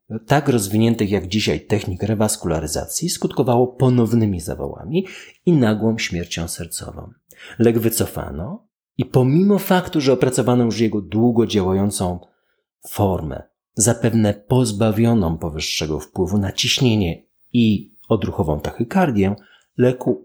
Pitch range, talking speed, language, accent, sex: 95-130 Hz, 105 wpm, Polish, native, male